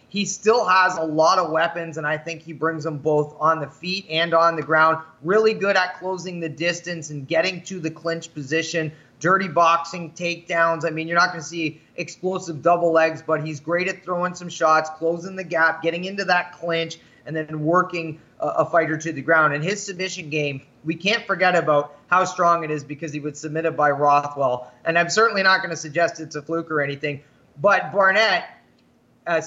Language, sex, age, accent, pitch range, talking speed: English, male, 30-49, American, 150-180 Hz, 210 wpm